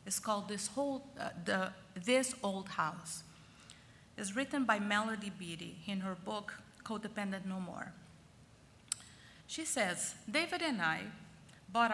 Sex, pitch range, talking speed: female, 200-255 Hz, 130 wpm